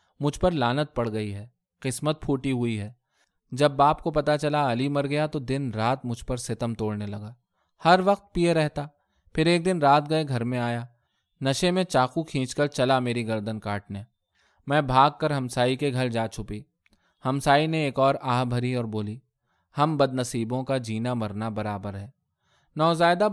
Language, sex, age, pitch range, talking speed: Urdu, male, 20-39, 115-145 Hz, 185 wpm